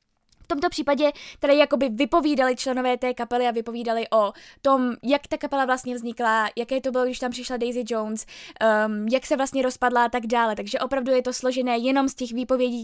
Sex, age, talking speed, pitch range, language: female, 10-29, 200 wpm, 245-285 Hz, Czech